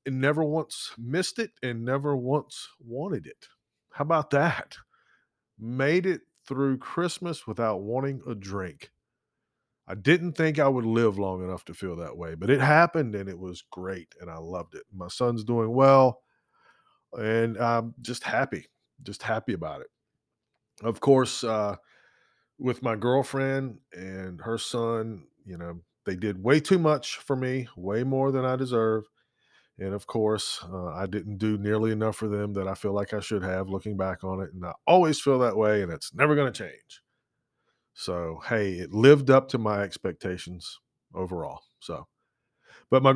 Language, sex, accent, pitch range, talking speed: English, male, American, 100-135 Hz, 175 wpm